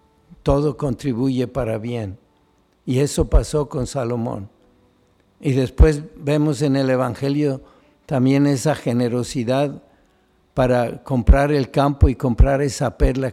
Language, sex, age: Spanish, male, 50-69